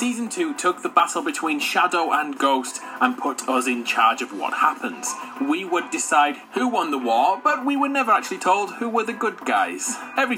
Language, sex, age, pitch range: English, male, 30-49, 185-285 Hz